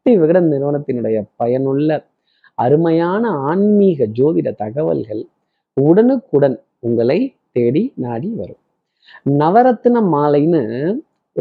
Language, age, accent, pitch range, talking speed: Tamil, 30-49, native, 125-175 Hz, 80 wpm